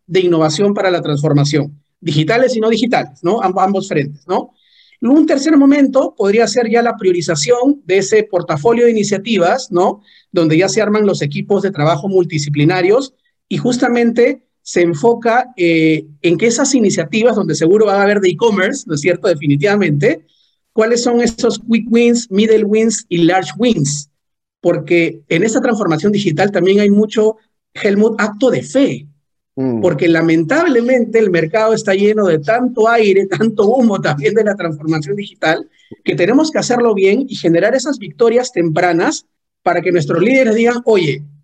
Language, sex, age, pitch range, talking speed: Spanish, male, 40-59, 170-235 Hz, 160 wpm